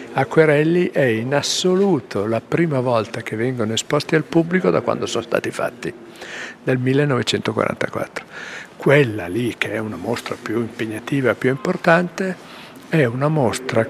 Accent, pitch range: native, 110-140 Hz